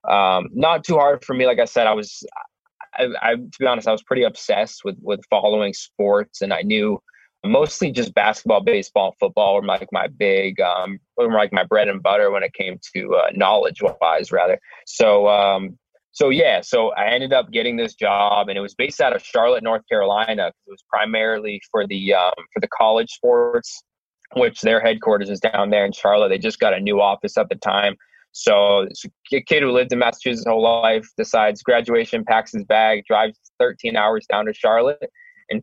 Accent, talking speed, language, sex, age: American, 205 wpm, English, male, 20-39